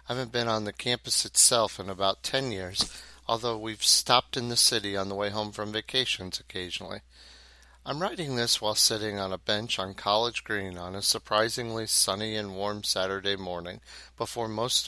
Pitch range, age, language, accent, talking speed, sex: 95-115 Hz, 40-59, English, American, 180 wpm, male